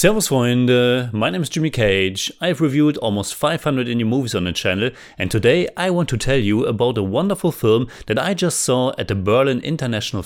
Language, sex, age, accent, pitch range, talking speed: English, male, 30-49, German, 100-140 Hz, 210 wpm